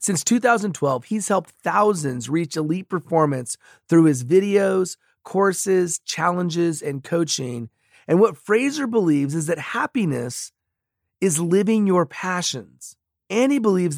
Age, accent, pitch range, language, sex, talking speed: 30-49, American, 135-195 Hz, English, male, 125 wpm